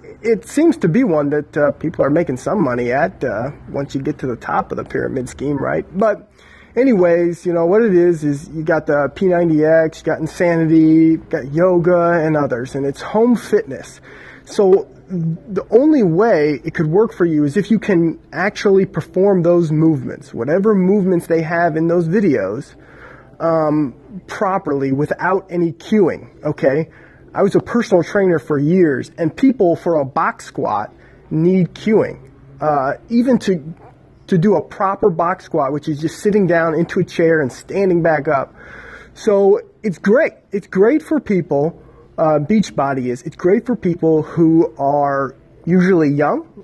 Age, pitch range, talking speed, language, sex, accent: 30-49, 150-195 Hz, 170 wpm, English, male, American